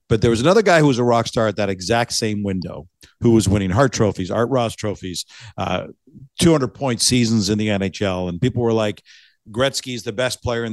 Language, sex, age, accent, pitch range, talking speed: English, male, 50-69, American, 100-130 Hz, 225 wpm